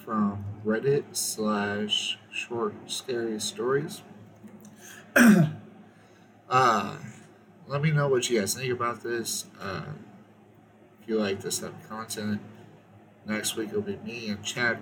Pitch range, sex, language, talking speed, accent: 105-125 Hz, male, English, 125 wpm, American